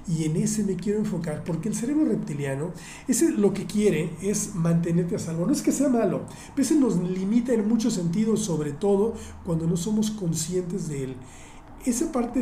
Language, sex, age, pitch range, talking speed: Spanish, male, 40-59, 165-210 Hz, 195 wpm